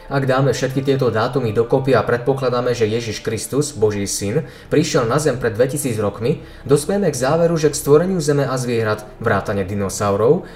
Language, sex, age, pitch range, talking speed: Slovak, male, 20-39, 110-150 Hz, 170 wpm